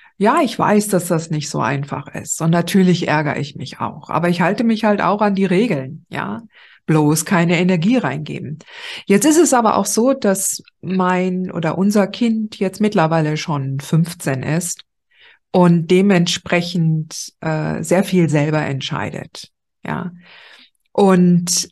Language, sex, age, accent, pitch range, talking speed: German, female, 50-69, German, 165-200 Hz, 150 wpm